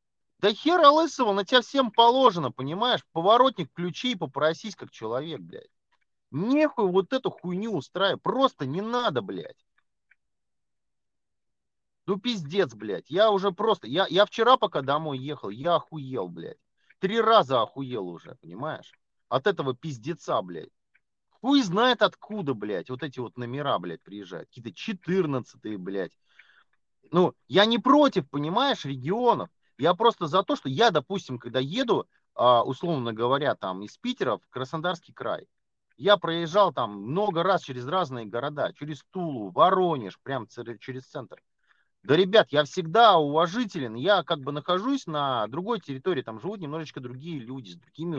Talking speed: 145 wpm